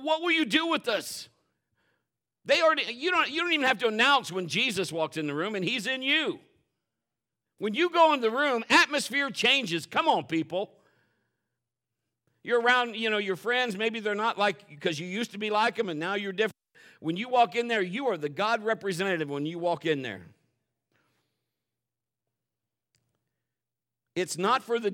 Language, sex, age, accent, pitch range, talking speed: English, male, 50-69, American, 155-230 Hz, 185 wpm